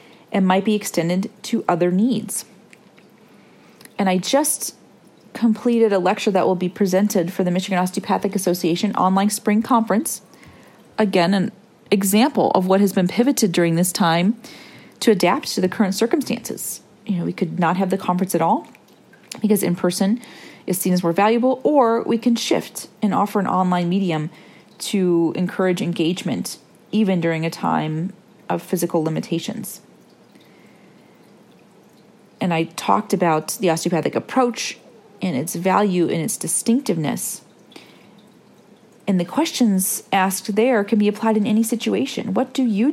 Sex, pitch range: female, 185-230 Hz